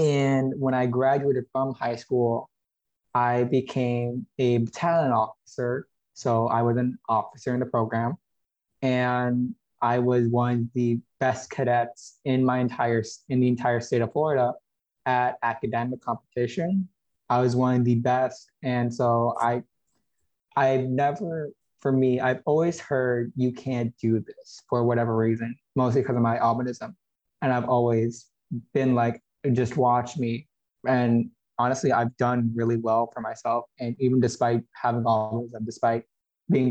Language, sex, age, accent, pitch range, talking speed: English, male, 20-39, American, 120-130 Hz, 150 wpm